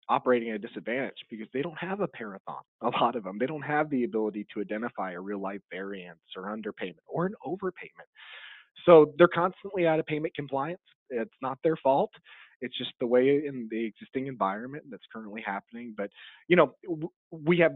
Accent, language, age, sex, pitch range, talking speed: American, English, 30-49, male, 110-150 Hz, 190 wpm